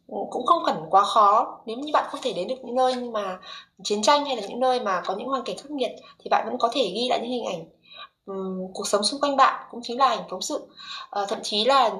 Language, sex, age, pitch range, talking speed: Vietnamese, female, 20-39, 195-260 Hz, 270 wpm